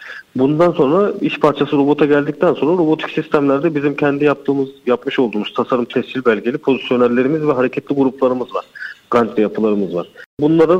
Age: 40-59